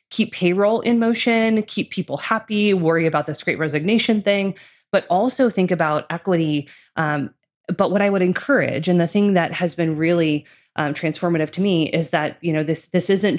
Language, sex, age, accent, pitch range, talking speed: English, female, 20-39, American, 160-195 Hz, 190 wpm